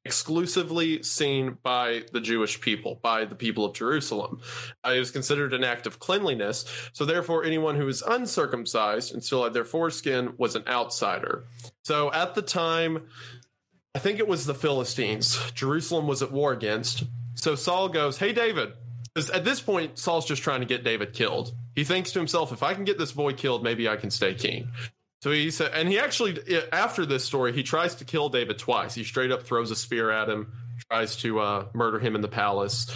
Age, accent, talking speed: 20-39, American, 200 wpm